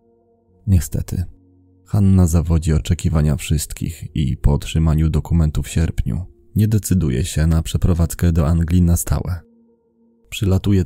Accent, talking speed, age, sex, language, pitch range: native, 115 wpm, 30-49, male, Polish, 85-95 Hz